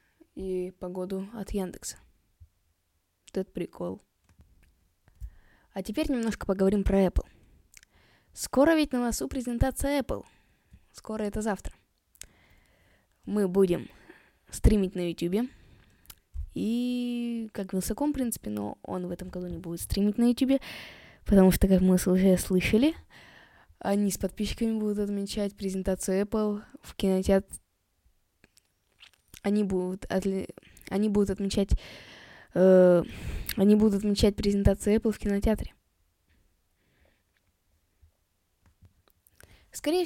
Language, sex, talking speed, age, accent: Russian, female, 105 wpm, 20-39, native